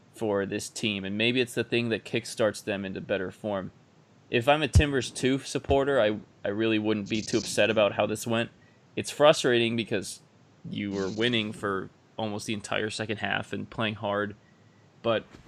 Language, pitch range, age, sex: English, 105-120 Hz, 20-39, male